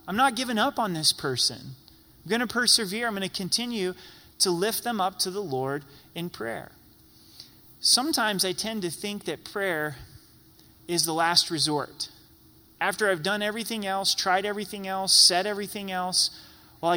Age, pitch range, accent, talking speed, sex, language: 30-49, 160-210 Hz, American, 165 wpm, male, English